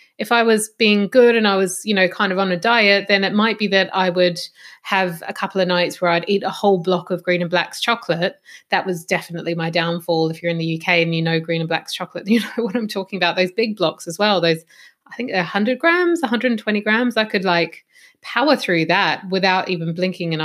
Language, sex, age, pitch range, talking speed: English, female, 20-39, 175-215 Hz, 245 wpm